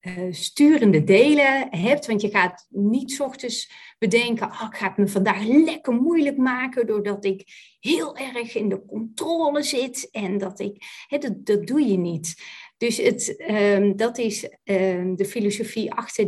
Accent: Dutch